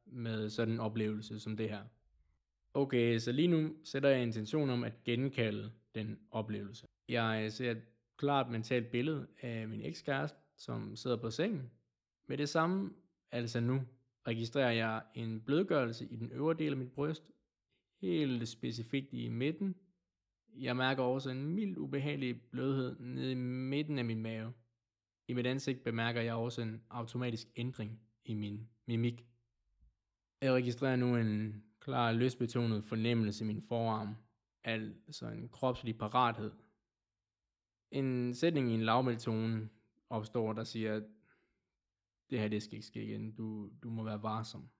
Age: 20-39